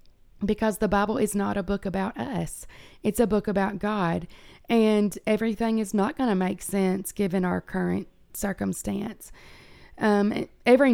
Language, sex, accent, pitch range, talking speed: English, female, American, 190-220 Hz, 155 wpm